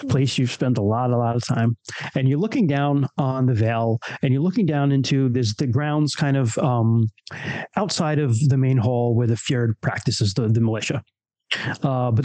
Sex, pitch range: male, 115-145 Hz